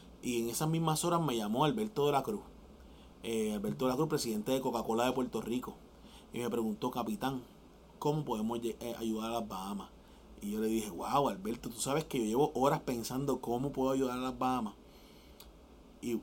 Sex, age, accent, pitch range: male, 30-49, Venezuelan, 110-130 Hz